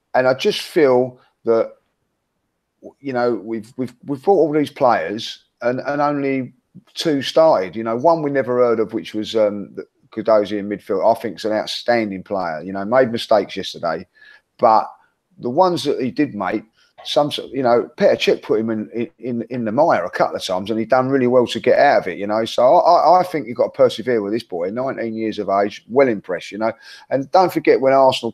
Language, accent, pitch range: English, British, 110-150 Hz